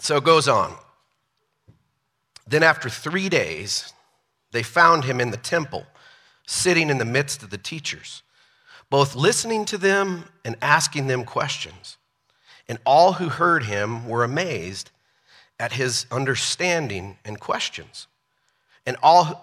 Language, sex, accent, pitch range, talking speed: English, male, American, 120-160 Hz, 135 wpm